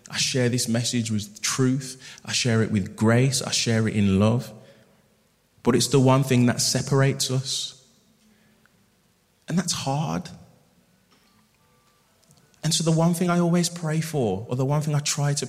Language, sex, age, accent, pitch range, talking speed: English, male, 20-39, British, 130-160 Hz, 165 wpm